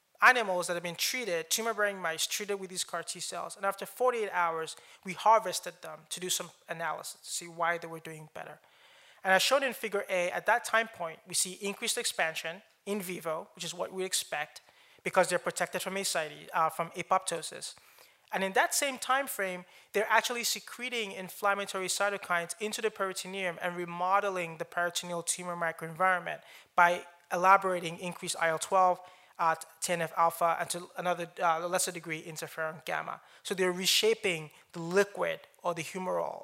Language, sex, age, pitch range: English, male, 20-39, 170-195 Hz